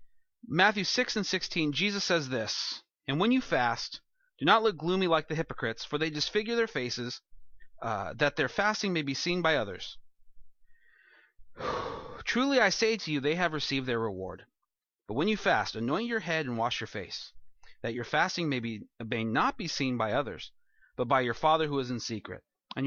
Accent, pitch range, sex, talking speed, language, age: American, 130-180 Hz, male, 190 wpm, English, 30-49